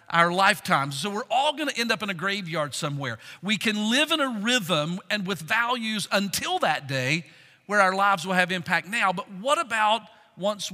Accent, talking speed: American, 195 wpm